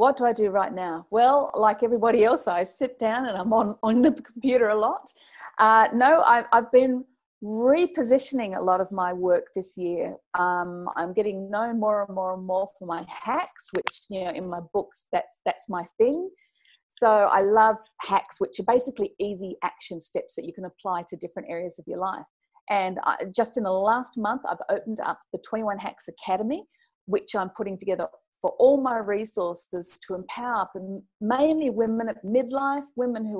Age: 40-59